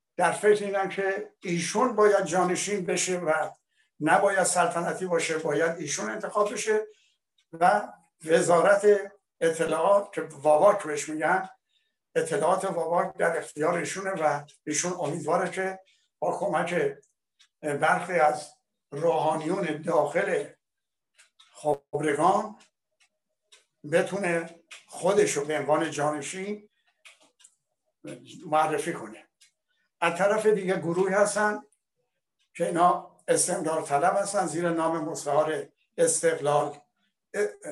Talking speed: 85 wpm